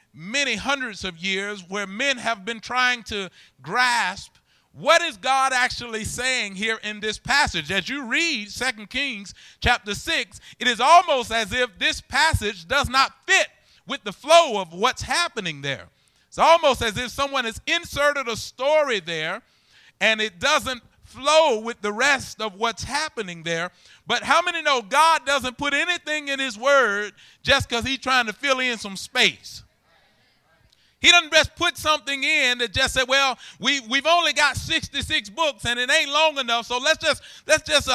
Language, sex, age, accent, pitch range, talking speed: English, male, 30-49, American, 220-300 Hz, 175 wpm